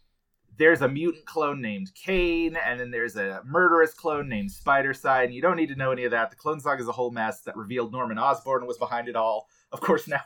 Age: 30-49